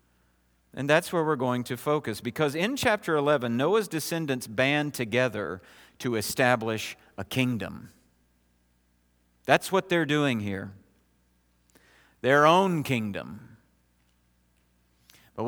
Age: 50-69